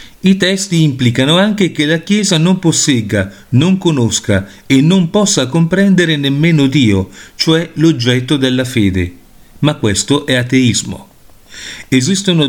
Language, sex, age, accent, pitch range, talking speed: Italian, male, 40-59, native, 115-160 Hz, 125 wpm